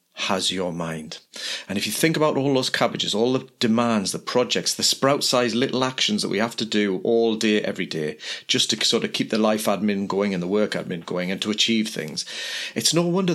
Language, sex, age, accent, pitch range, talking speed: English, male, 40-59, British, 105-135 Hz, 225 wpm